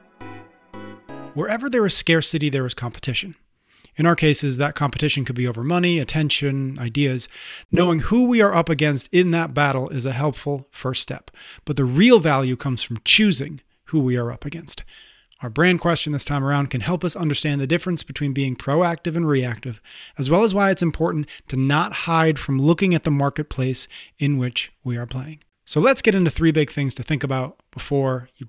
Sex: male